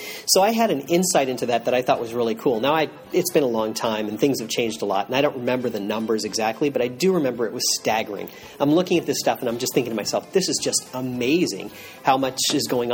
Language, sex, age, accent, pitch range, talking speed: English, male, 40-59, American, 115-145 Hz, 270 wpm